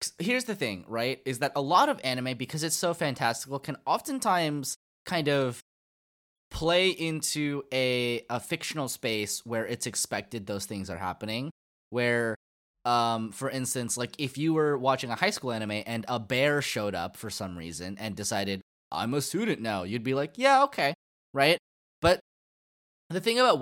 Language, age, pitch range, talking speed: English, 10-29, 110-150 Hz, 175 wpm